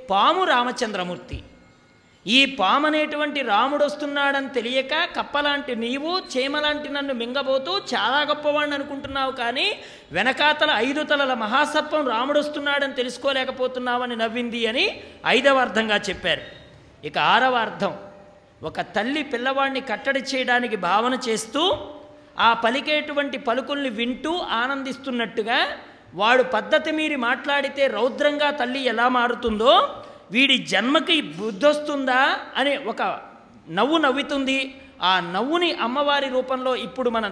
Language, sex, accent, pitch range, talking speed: English, male, Indian, 230-290 Hz, 70 wpm